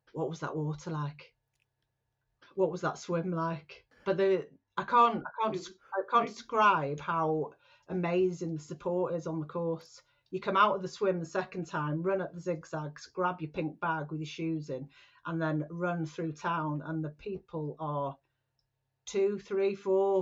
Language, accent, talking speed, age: English, British, 180 wpm, 40-59